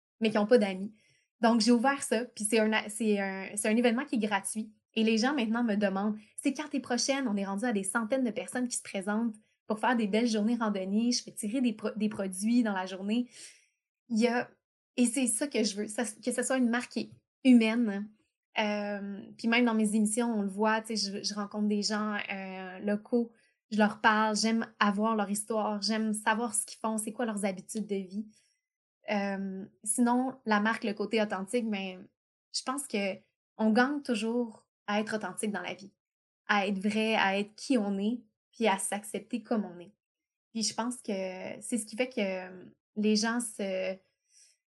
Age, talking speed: 20-39, 205 wpm